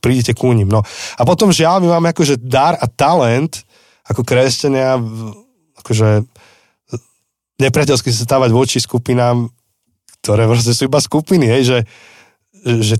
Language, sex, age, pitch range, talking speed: Slovak, male, 30-49, 105-125 Hz, 140 wpm